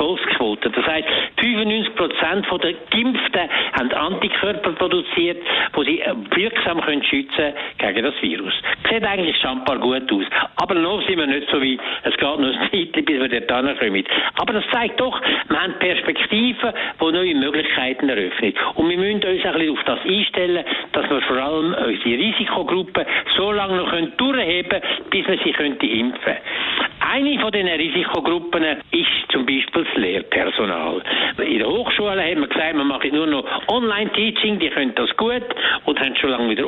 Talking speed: 170 wpm